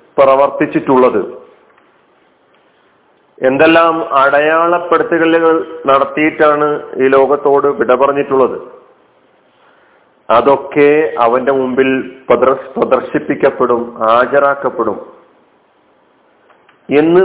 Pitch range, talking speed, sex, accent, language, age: 135-160 Hz, 45 wpm, male, native, Malayalam, 40-59